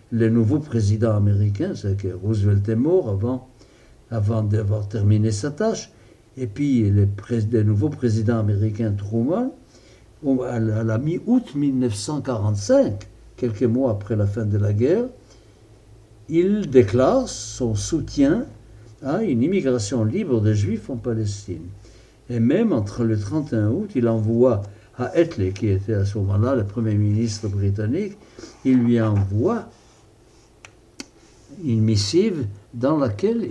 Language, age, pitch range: French, 60-79, 110-130 Hz